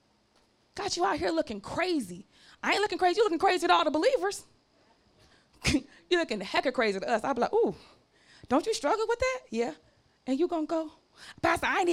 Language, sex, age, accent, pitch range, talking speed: English, female, 30-49, American, 255-380 Hz, 215 wpm